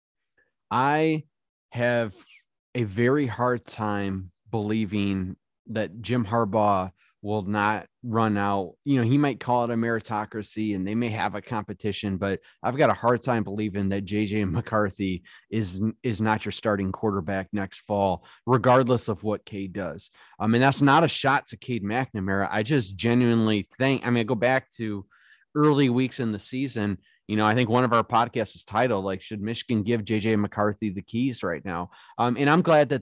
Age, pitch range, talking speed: 30-49, 105-130 Hz, 180 wpm